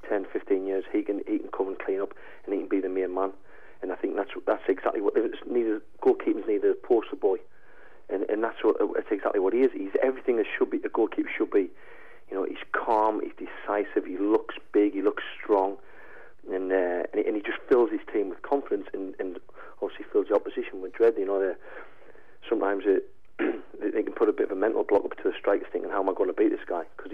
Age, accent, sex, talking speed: 40-59, British, male, 240 wpm